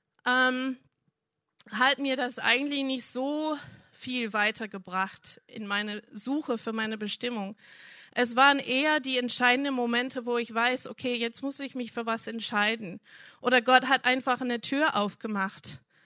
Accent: German